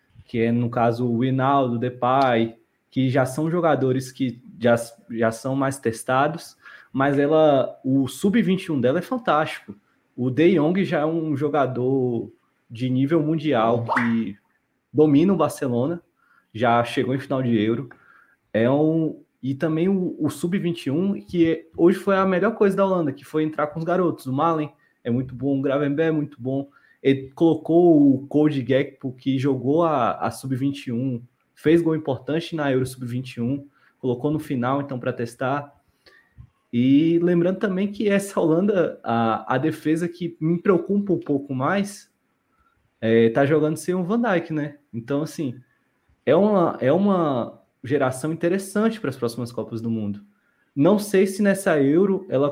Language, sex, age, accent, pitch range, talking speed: Portuguese, male, 20-39, Brazilian, 130-165 Hz, 160 wpm